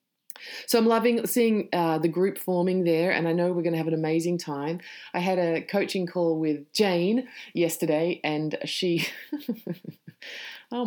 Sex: female